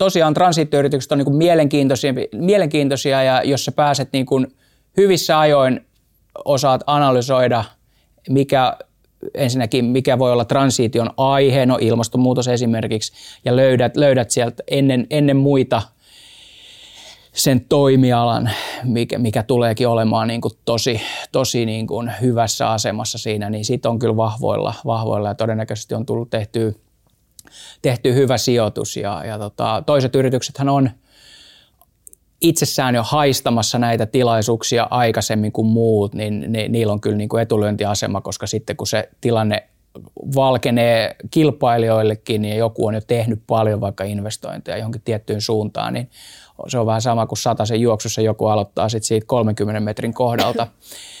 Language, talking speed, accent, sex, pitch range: Finnish, 135 wpm, native, male, 110-135 Hz